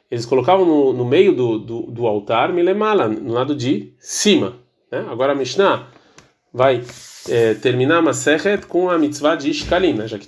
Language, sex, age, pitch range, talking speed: Portuguese, male, 40-59, 125-185 Hz, 175 wpm